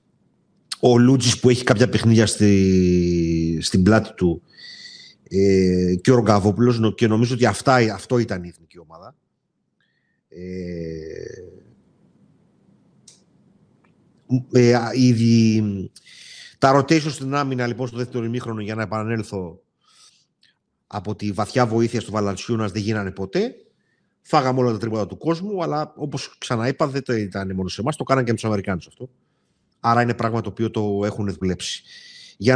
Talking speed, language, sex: 140 wpm, Greek, male